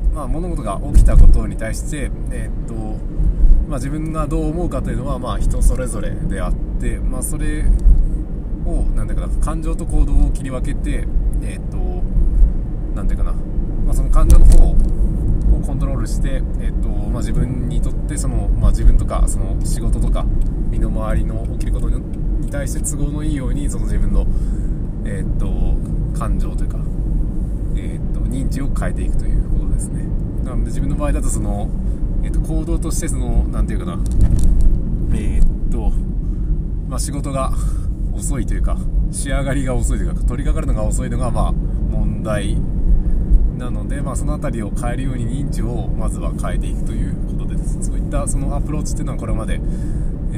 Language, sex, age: Japanese, male, 20-39